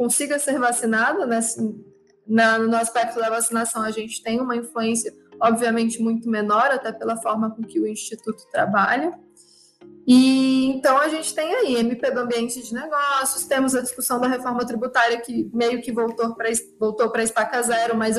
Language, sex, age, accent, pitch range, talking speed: Portuguese, female, 20-39, Brazilian, 225-265 Hz, 160 wpm